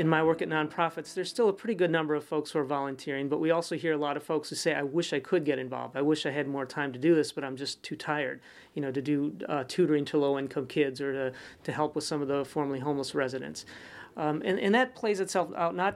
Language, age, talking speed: English, 40-59, 280 wpm